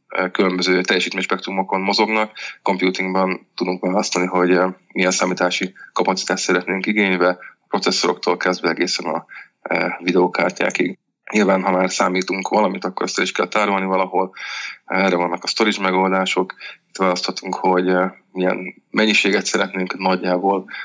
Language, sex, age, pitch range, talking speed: Hungarian, male, 20-39, 90-95 Hz, 120 wpm